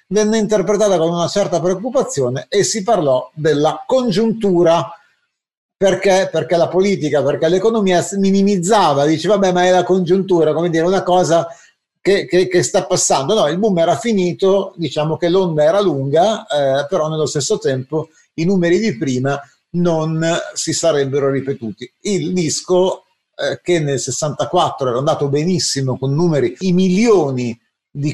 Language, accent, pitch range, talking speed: Italian, native, 150-190 Hz, 150 wpm